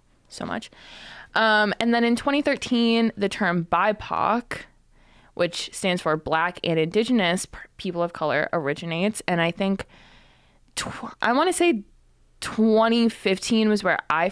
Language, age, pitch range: English, 20-39, 165-225 Hz